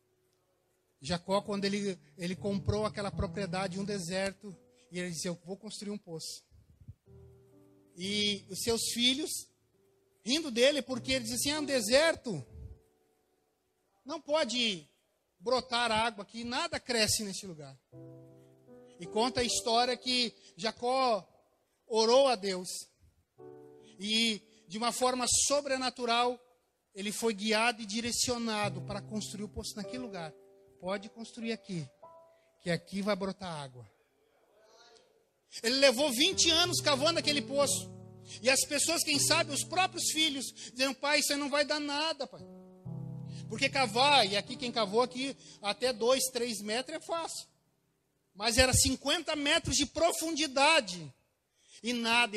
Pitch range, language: 185-255 Hz, Portuguese